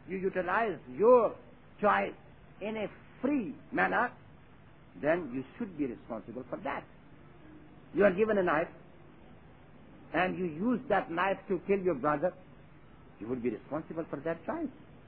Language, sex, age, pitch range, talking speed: English, male, 60-79, 165-255 Hz, 145 wpm